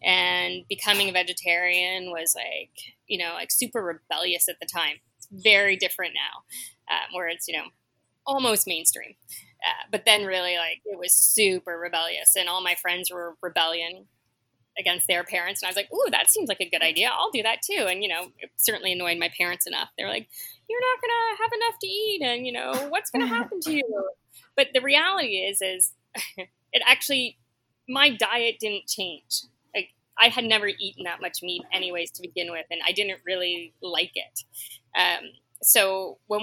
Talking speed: 195 wpm